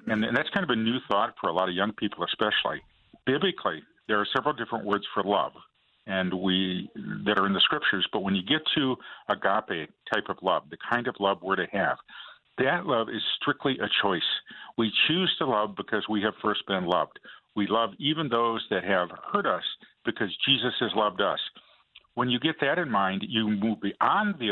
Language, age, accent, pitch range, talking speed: English, 50-69, American, 105-125 Hz, 205 wpm